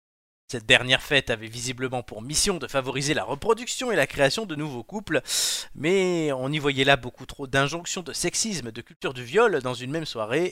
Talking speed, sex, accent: 200 wpm, male, French